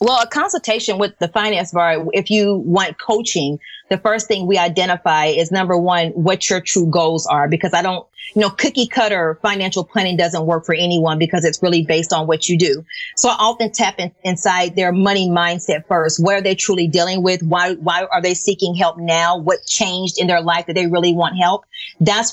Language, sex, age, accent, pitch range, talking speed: English, female, 30-49, American, 175-215 Hz, 210 wpm